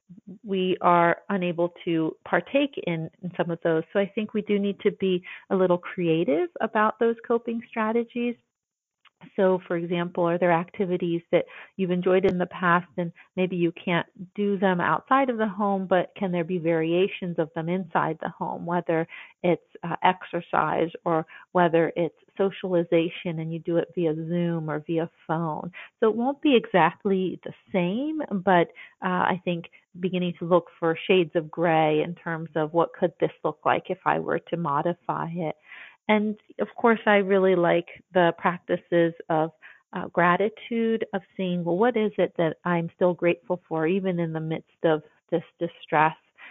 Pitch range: 165-190 Hz